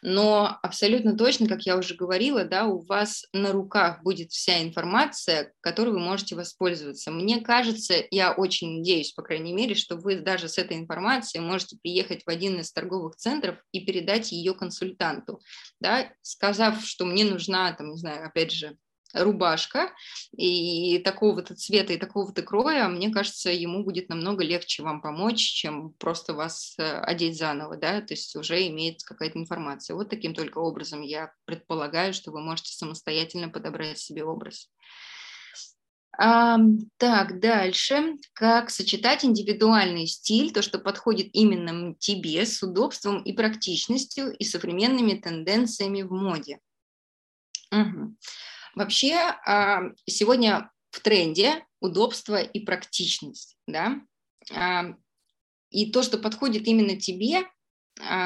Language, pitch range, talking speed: Russian, 170-220 Hz, 135 wpm